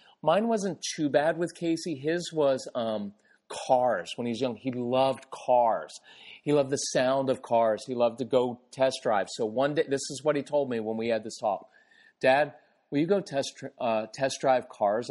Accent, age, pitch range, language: American, 40-59, 115-145 Hz, English